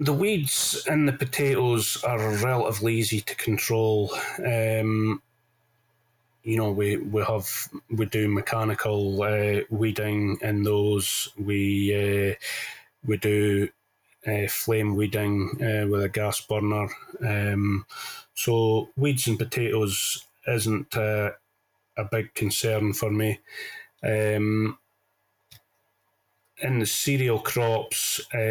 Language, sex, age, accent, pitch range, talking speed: English, male, 30-49, British, 105-120 Hz, 110 wpm